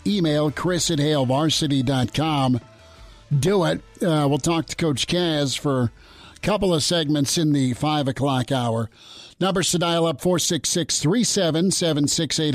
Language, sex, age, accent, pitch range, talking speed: English, male, 50-69, American, 125-155 Hz, 165 wpm